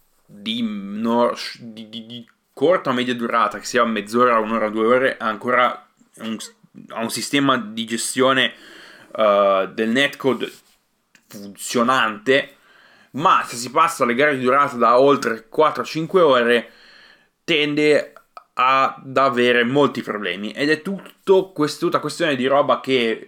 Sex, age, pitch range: male, 20-39, 110-140 Hz